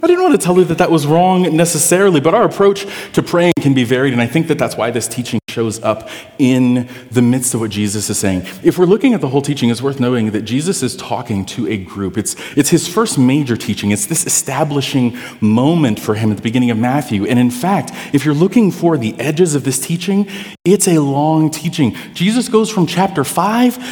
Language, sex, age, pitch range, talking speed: English, male, 30-49, 115-170 Hz, 230 wpm